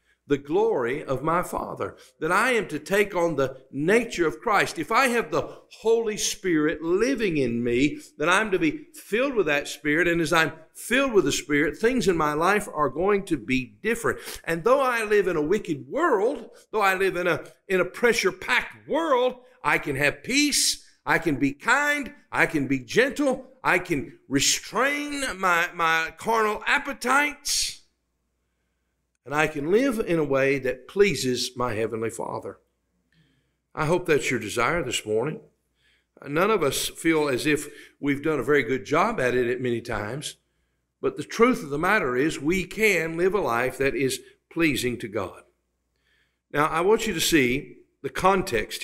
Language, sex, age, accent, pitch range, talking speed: English, male, 50-69, American, 140-230 Hz, 180 wpm